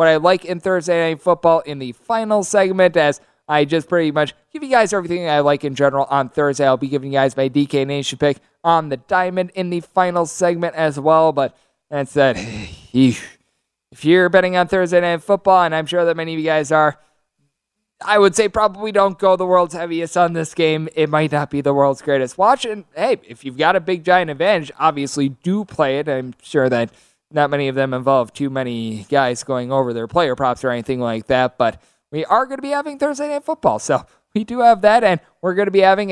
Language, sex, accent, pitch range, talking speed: English, male, American, 140-190 Hz, 230 wpm